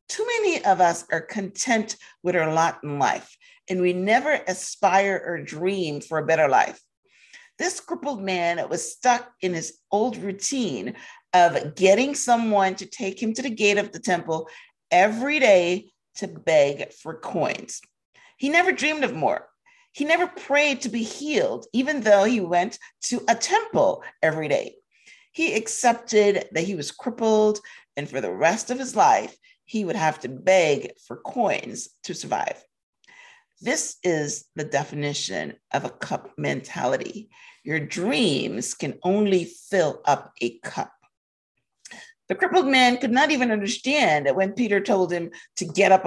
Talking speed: 160 wpm